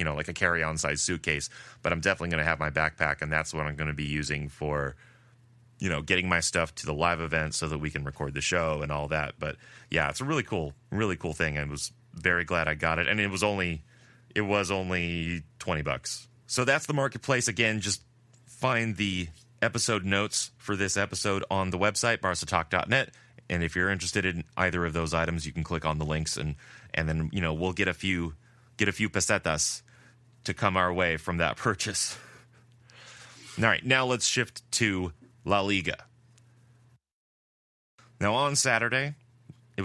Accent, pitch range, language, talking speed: American, 85-120 Hz, English, 200 wpm